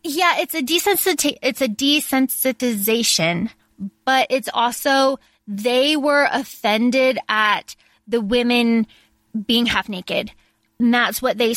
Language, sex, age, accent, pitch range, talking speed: English, female, 20-39, American, 205-245 Hz, 120 wpm